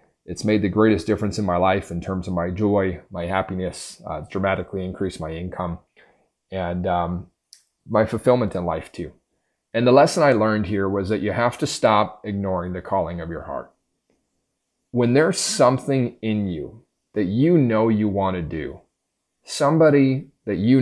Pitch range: 95-115 Hz